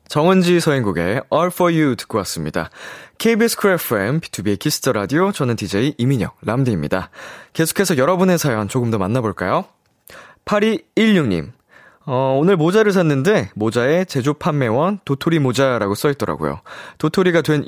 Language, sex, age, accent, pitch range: Korean, male, 20-39, native, 110-180 Hz